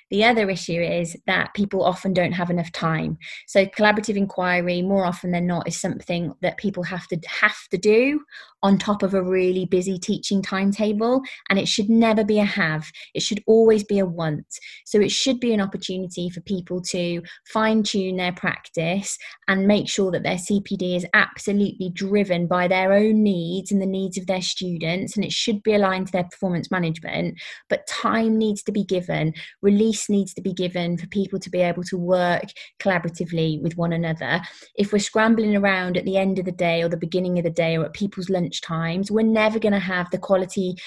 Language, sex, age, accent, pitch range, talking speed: English, female, 20-39, British, 180-205 Hz, 200 wpm